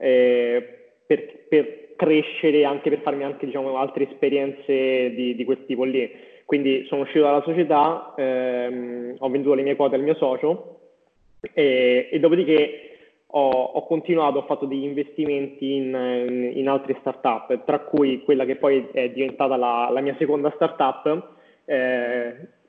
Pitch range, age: 130-150 Hz, 20-39